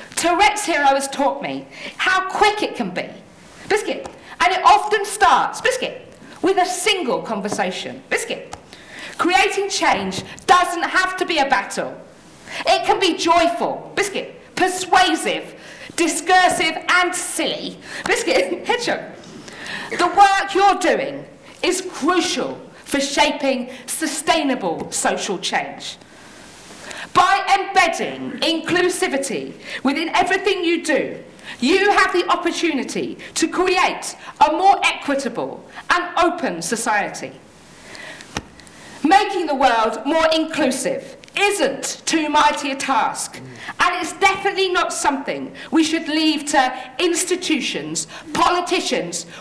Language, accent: English, British